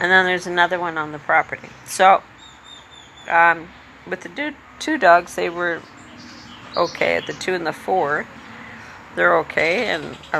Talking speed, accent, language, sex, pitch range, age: 160 wpm, American, English, female, 130-175 Hz, 50-69